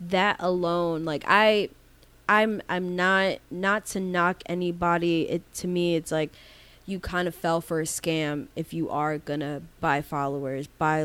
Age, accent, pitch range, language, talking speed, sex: 20-39, American, 160-195 Hz, English, 165 wpm, female